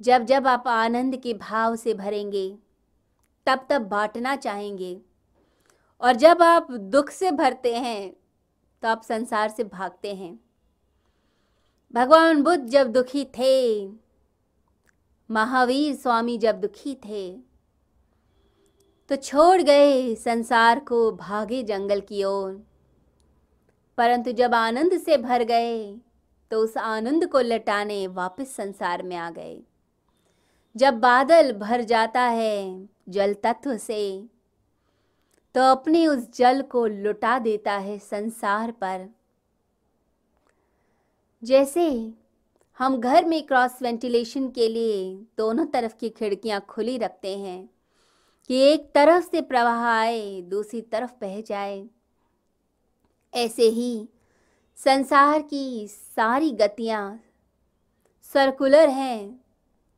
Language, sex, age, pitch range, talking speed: Hindi, female, 20-39, 205-260 Hz, 110 wpm